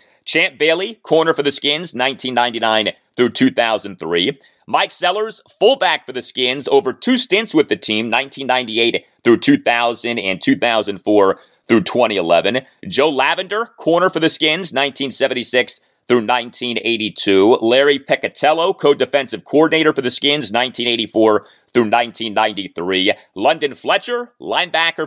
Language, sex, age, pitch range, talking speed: English, male, 30-49, 115-190 Hz, 125 wpm